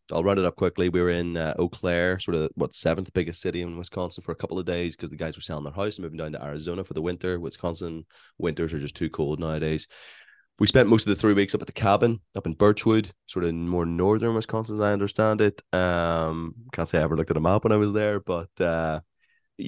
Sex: male